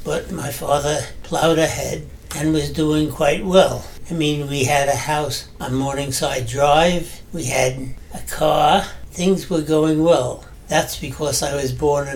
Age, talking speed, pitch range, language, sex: 60-79, 165 wpm, 135-155 Hz, English, male